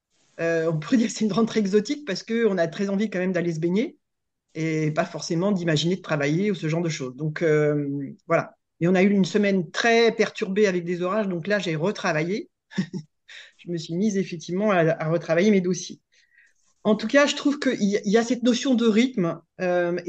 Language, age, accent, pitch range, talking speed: French, 30-49, French, 165-210 Hz, 210 wpm